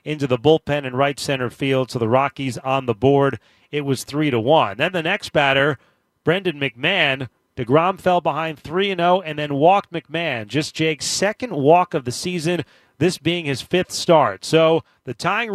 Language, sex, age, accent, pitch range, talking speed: English, male, 30-49, American, 135-170 Hz, 180 wpm